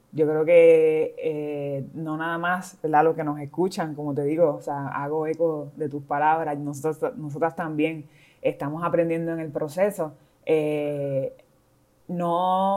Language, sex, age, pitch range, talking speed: Spanish, female, 20-39, 155-185 Hz, 150 wpm